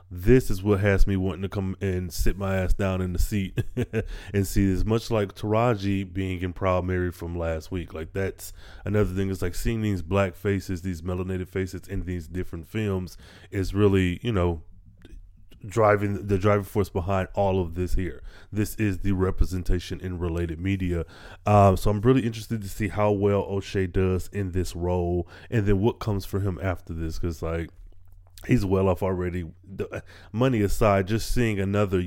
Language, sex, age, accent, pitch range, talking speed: English, male, 20-39, American, 90-105 Hz, 185 wpm